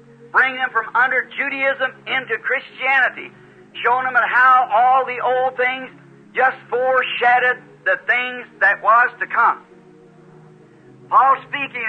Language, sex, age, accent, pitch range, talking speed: English, male, 50-69, American, 245-270 Hz, 120 wpm